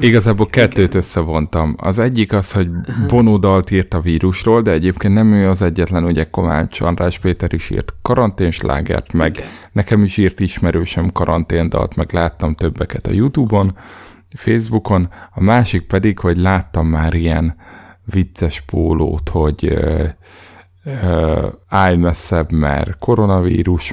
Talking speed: 130 wpm